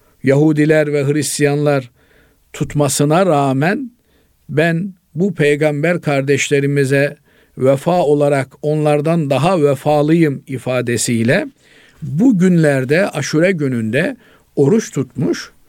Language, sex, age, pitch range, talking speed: Turkish, male, 50-69, 140-175 Hz, 80 wpm